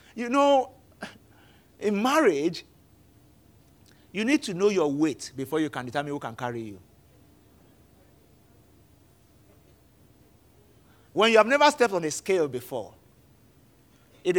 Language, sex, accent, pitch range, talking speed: English, male, Nigerian, 125-195 Hz, 115 wpm